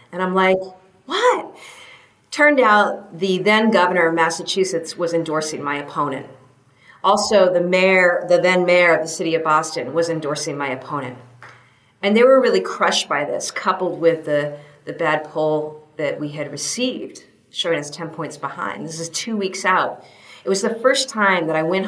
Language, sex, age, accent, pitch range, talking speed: English, female, 40-59, American, 155-190 Hz, 180 wpm